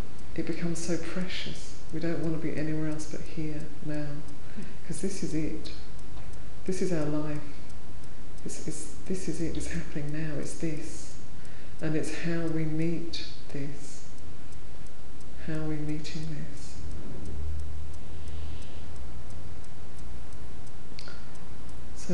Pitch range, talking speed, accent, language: 145-165 Hz, 120 wpm, British, English